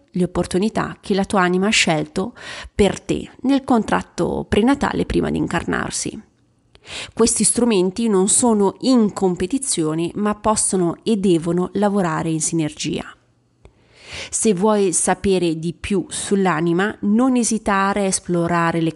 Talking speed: 125 wpm